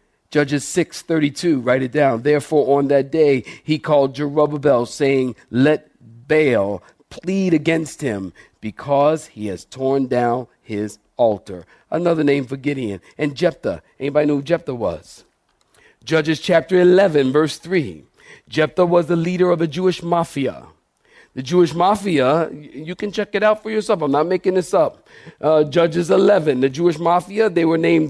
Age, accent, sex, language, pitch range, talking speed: 50-69, American, male, English, 130-170 Hz, 155 wpm